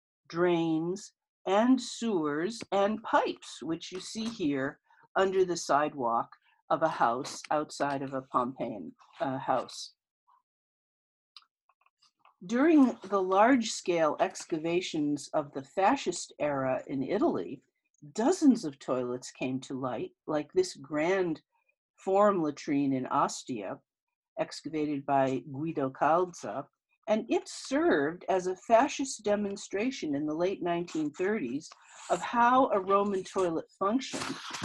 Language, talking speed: English, 115 wpm